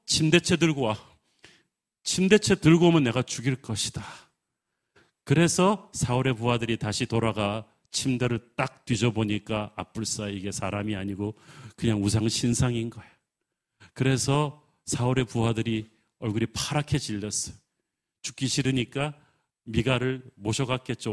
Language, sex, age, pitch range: Korean, male, 40-59, 115-150 Hz